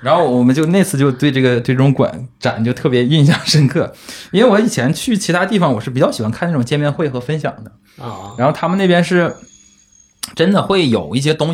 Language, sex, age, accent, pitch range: Chinese, male, 20-39, native, 120-170 Hz